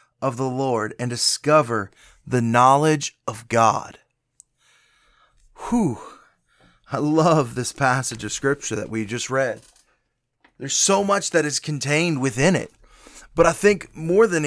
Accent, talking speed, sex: American, 135 wpm, male